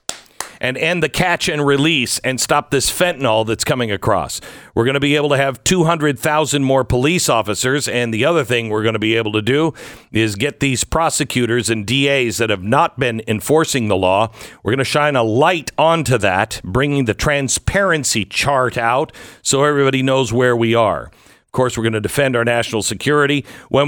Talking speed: 195 wpm